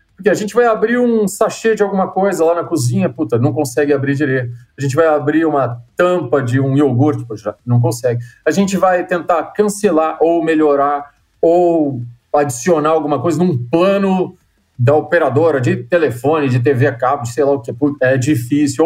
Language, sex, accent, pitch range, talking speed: Portuguese, male, Brazilian, 135-175 Hz, 185 wpm